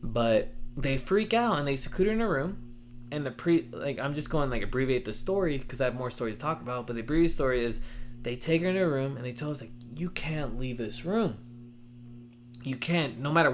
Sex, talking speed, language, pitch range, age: male, 250 wpm, English, 120-160 Hz, 20-39